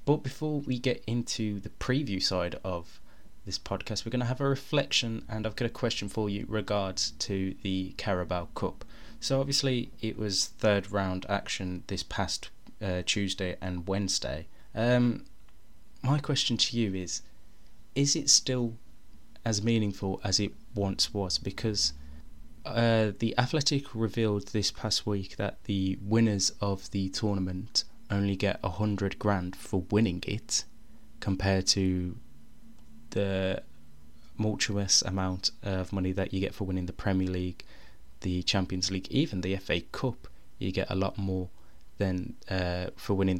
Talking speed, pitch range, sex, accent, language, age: 155 wpm, 95-115 Hz, male, British, English, 20-39